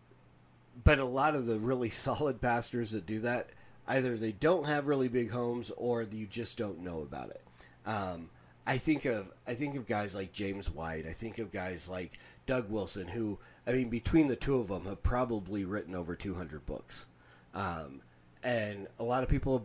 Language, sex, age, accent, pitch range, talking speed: English, male, 30-49, American, 90-125 Hz, 195 wpm